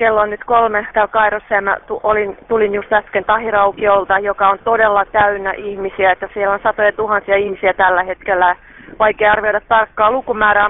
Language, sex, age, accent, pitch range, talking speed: Finnish, female, 30-49, native, 195-220 Hz, 165 wpm